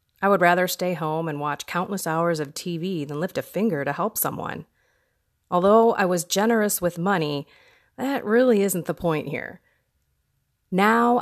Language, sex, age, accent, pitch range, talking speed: English, female, 30-49, American, 170-220 Hz, 165 wpm